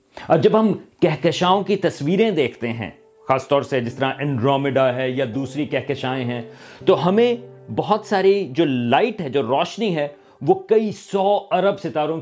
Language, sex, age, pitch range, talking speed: Urdu, male, 40-59, 130-175 Hz, 165 wpm